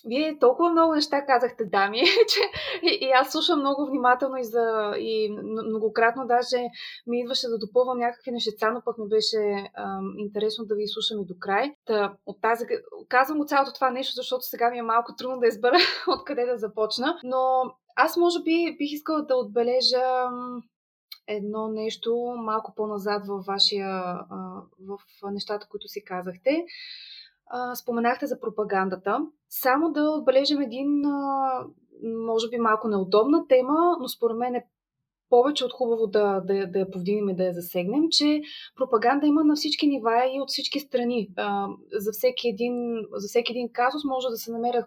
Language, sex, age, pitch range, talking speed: Bulgarian, female, 20-39, 215-260 Hz, 165 wpm